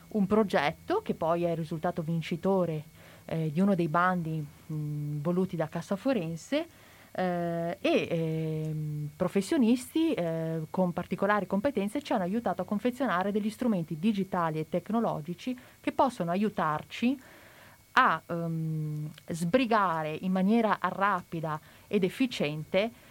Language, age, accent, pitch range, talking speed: Italian, 30-49, native, 165-210 Hz, 120 wpm